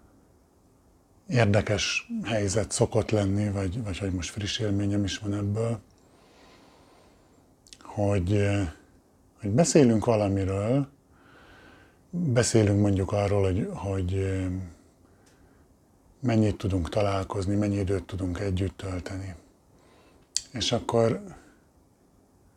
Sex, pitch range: male, 90-110 Hz